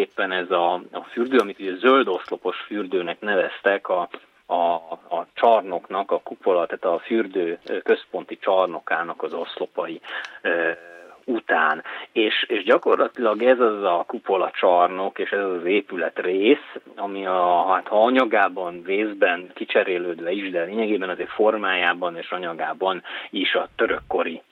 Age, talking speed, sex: 30-49, 140 wpm, male